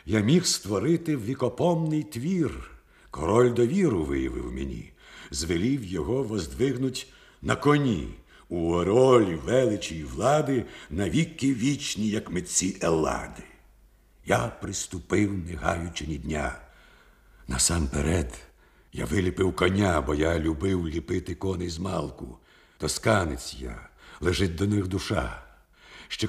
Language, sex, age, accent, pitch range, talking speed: Ukrainian, male, 60-79, native, 75-115 Hz, 110 wpm